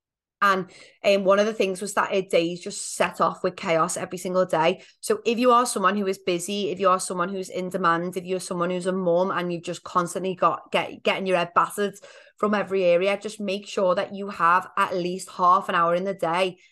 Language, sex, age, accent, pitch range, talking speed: English, female, 30-49, British, 175-195 Hz, 230 wpm